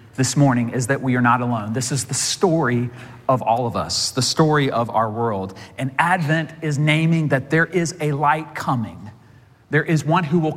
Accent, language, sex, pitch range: American, English, male, 125-170 Hz